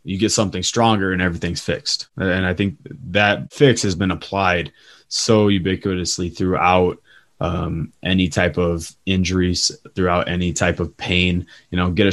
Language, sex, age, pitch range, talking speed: English, male, 20-39, 85-95 Hz, 160 wpm